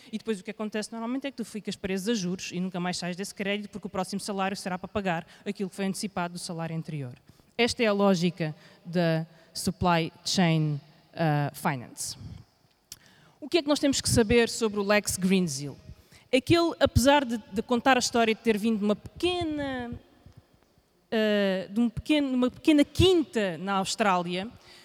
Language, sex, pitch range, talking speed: Portuguese, female, 190-245 Hz, 175 wpm